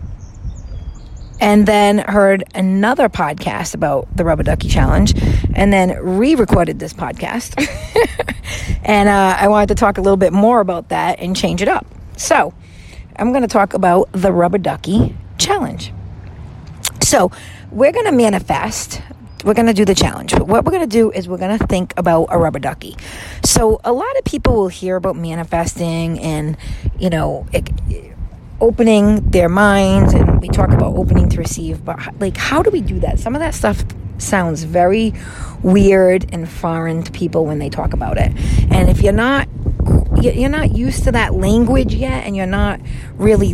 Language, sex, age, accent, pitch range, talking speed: English, female, 40-59, American, 150-205 Hz, 175 wpm